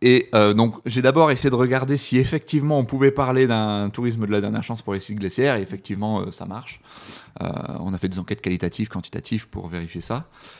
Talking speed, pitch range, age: 220 wpm, 105-135 Hz, 30-49